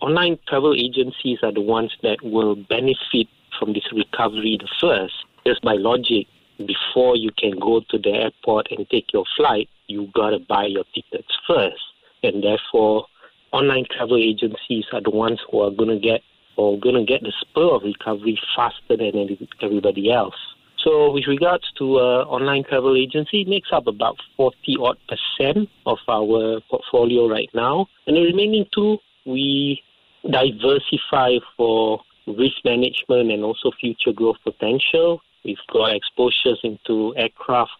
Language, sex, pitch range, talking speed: English, male, 110-140 Hz, 150 wpm